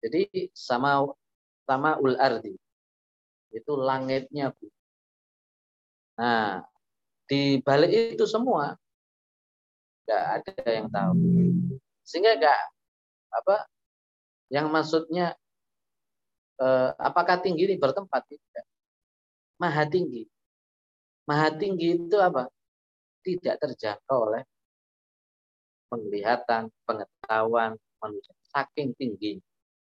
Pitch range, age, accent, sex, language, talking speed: 110-155 Hz, 30-49, native, male, Indonesian, 85 wpm